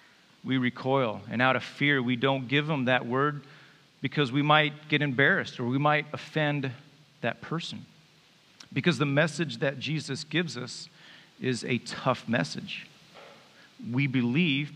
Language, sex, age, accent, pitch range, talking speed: English, male, 40-59, American, 115-150 Hz, 145 wpm